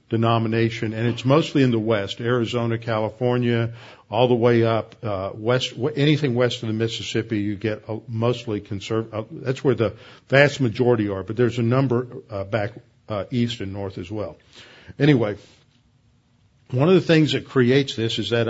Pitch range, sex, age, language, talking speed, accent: 110-130 Hz, male, 50-69, English, 175 wpm, American